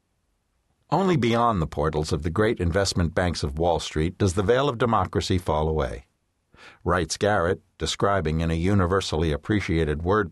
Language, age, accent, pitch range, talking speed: English, 60-79, American, 85-115 Hz, 155 wpm